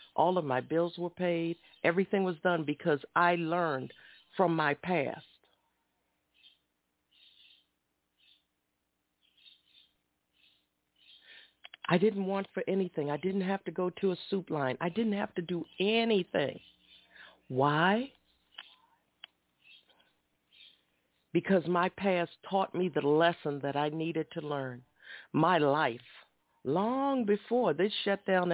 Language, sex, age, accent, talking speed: English, female, 50-69, American, 115 wpm